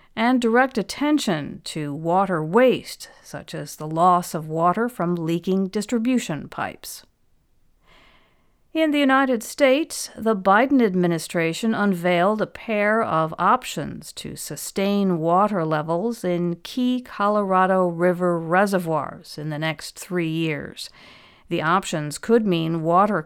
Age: 50-69